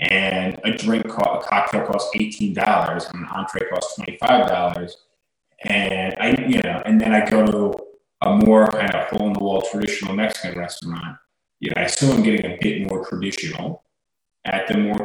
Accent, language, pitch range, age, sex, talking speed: American, English, 95-110 Hz, 20-39, male, 180 wpm